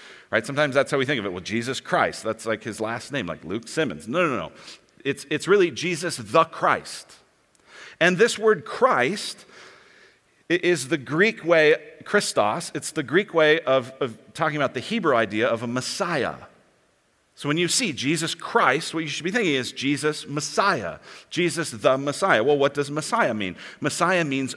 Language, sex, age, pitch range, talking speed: English, male, 40-59, 125-175 Hz, 185 wpm